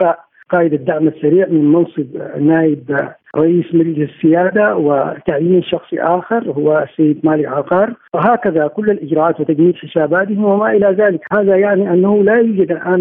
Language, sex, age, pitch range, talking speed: Arabic, male, 50-69, 155-185 Hz, 140 wpm